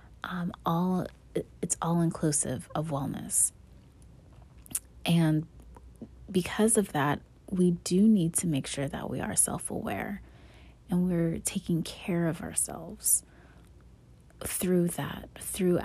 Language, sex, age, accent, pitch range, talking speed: English, female, 30-49, American, 145-185 Hz, 115 wpm